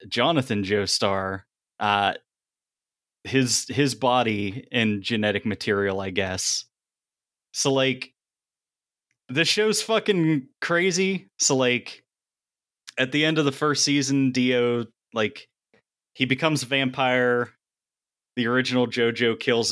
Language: English